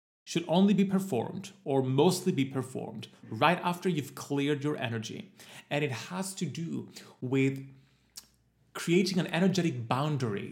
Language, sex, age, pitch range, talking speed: English, male, 30-49, 125-165 Hz, 135 wpm